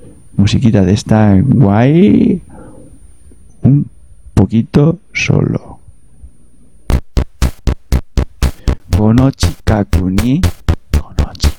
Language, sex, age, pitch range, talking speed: Spanish, male, 60-79, 90-120 Hz, 50 wpm